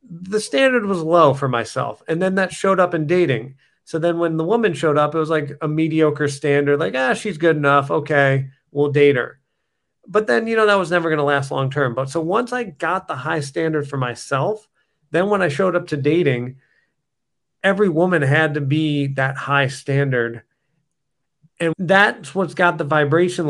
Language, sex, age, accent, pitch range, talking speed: English, male, 40-59, American, 140-170 Hz, 195 wpm